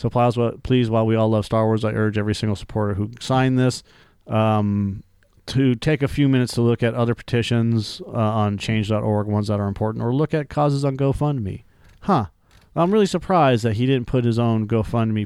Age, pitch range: 40-59, 105-130 Hz